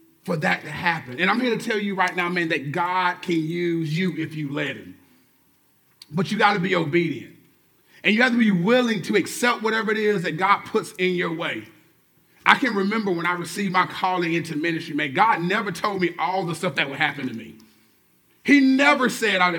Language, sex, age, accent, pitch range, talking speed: English, male, 30-49, American, 175-230 Hz, 220 wpm